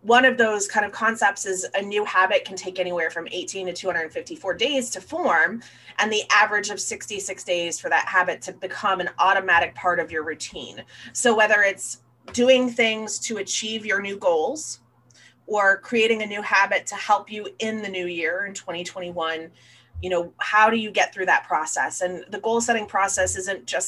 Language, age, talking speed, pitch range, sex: English, 30-49, 195 wpm, 175-210 Hz, female